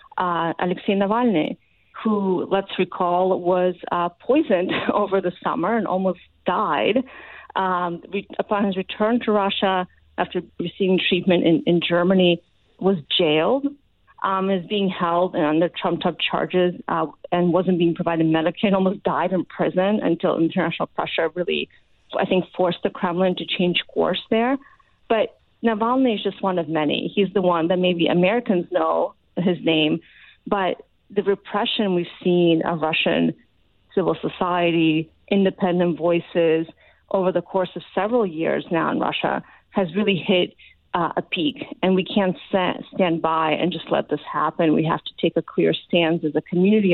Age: 30-49